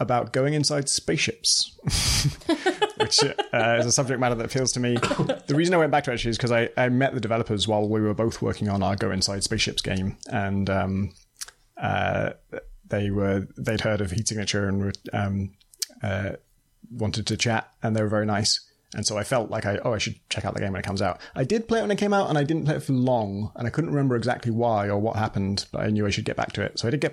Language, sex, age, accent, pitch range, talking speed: English, male, 30-49, British, 110-135 Hz, 260 wpm